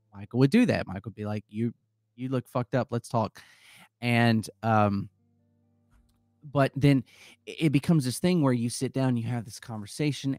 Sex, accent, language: male, American, English